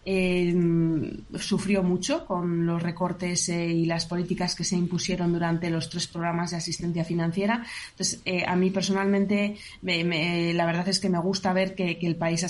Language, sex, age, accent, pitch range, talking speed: Spanish, female, 20-39, Spanish, 170-205 Hz, 185 wpm